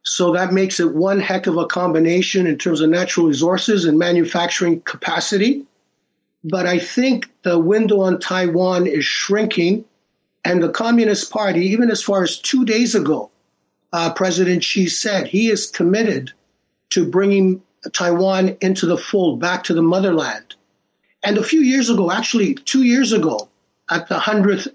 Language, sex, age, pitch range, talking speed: English, male, 50-69, 175-210 Hz, 160 wpm